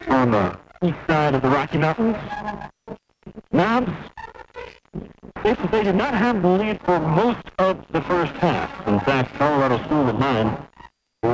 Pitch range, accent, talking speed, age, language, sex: 130-175 Hz, American, 145 wpm, 40-59, English, male